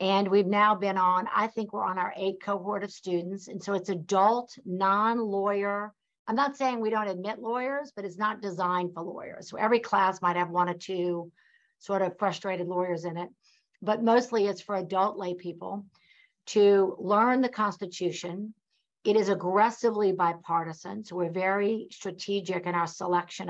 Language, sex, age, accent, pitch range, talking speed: English, female, 50-69, American, 180-220 Hz, 175 wpm